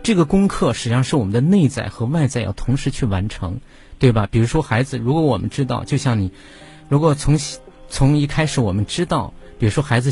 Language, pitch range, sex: Chinese, 120-155 Hz, male